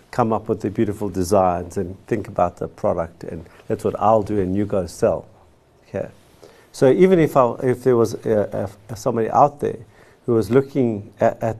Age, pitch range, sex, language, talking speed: 50-69, 100-120 Hz, male, English, 205 wpm